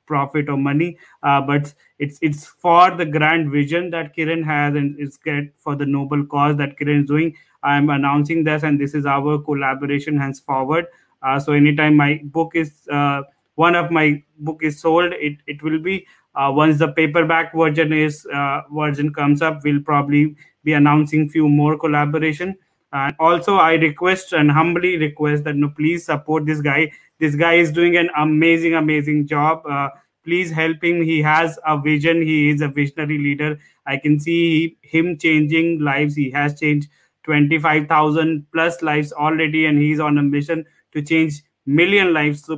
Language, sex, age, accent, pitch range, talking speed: English, male, 20-39, Indian, 145-165 Hz, 175 wpm